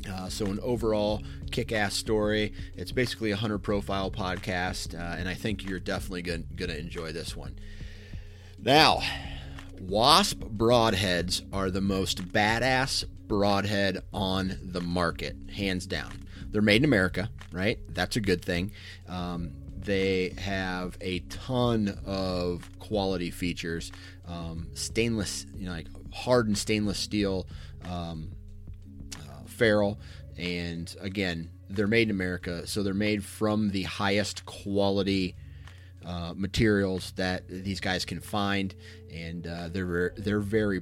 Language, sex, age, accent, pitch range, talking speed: English, male, 30-49, American, 90-100 Hz, 130 wpm